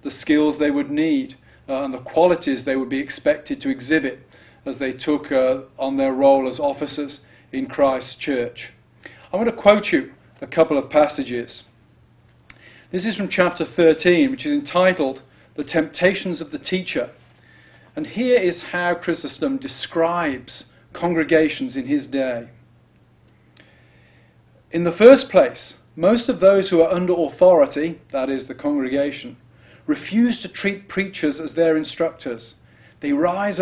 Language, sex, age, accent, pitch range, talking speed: English, male, 40-59, British, 135-180 Hz, 150 wpm